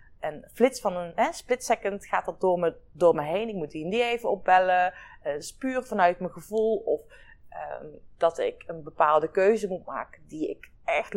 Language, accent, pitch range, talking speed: Dutch, Dutch, 180-255 Hz, 210 wpm